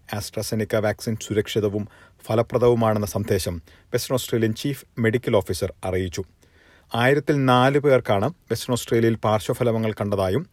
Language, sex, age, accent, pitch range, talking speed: Malayalam, male, 40-59, native, 95-125 Hz, 105 wpm